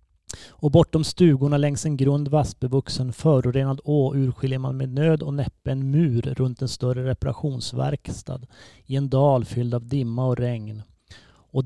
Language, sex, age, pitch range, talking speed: Swedish, male, 30-49, 115-140 Hz, 145 wpm